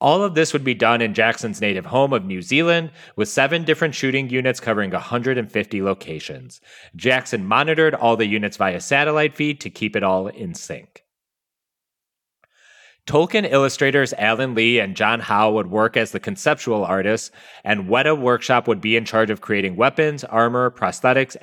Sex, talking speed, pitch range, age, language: male, 170 wpm, 110-150 Hz, 30-49, English